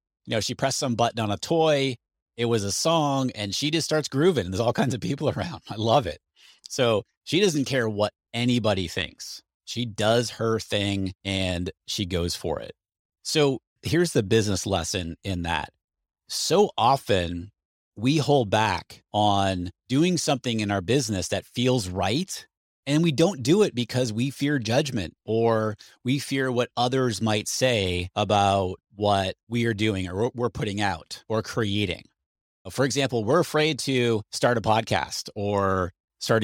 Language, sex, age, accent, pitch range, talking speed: English, male, 30-49, American, 100-130 Hz, 170 wpm